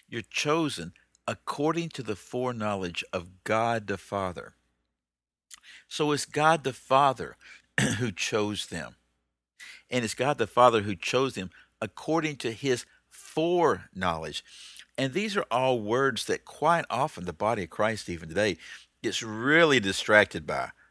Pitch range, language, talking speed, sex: 90-125 Hz, English, 140 wpm, male